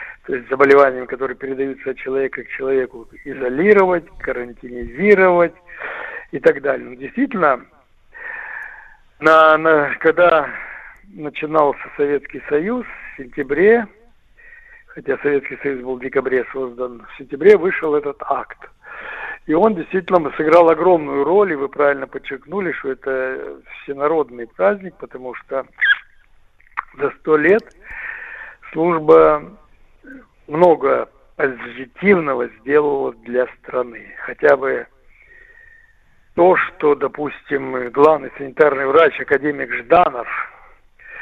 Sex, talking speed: male, 105 wpm